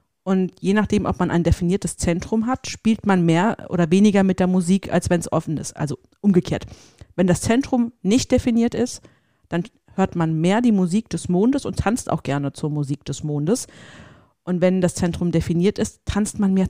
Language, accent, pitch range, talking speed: German, German, 160-200 Hz, 200 wpm